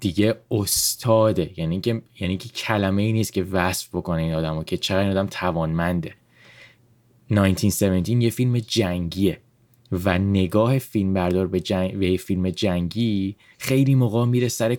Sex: male